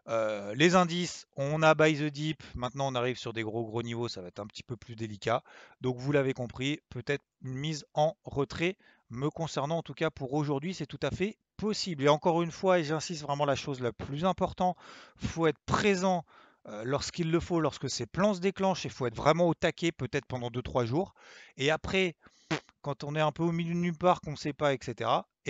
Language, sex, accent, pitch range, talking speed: French, male, French, 125-170 Hz, 230 wpm